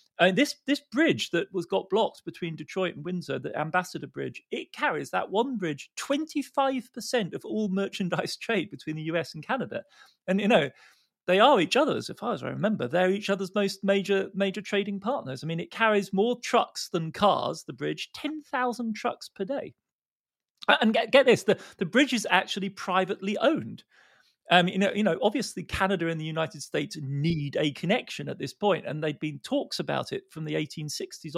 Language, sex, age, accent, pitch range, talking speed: English, male, 40-59, British, 155-225 Hz, 190 wpm